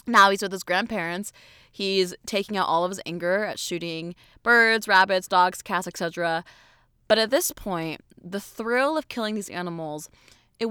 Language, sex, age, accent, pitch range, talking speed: English, female, 20-39, American, 165-215 Hz, 170 wpm